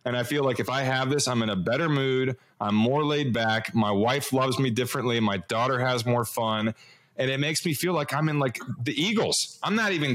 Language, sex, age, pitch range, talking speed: English, male, 30-49, 130-160 Hz, 240 wpm